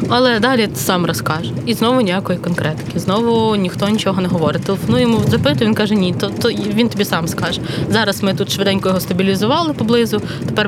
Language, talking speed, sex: Ukrainian, 190 wpm, female